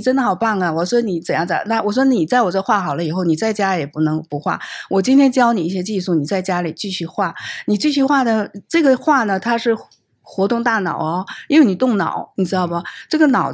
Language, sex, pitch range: Chinese, female, 180-250 Hz